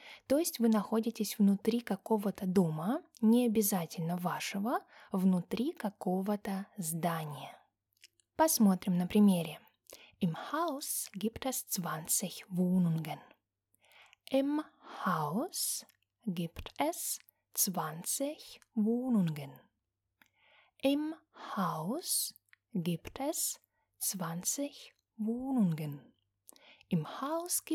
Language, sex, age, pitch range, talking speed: Russian, female, 20-39, 180-250 Hz, 45 wpm